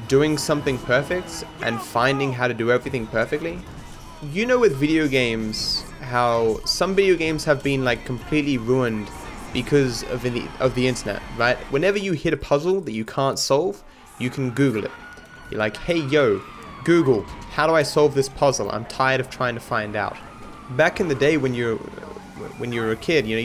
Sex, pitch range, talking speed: male, 120-155 Hz, 190 wpm